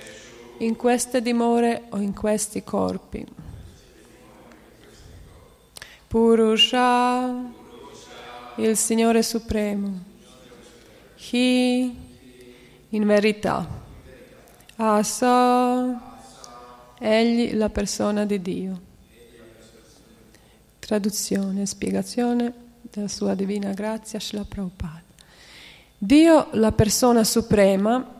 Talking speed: 70 wpm